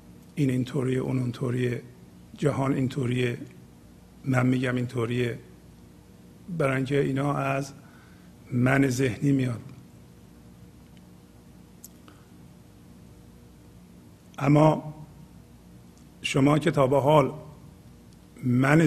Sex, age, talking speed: male, 50-69, 75 wpm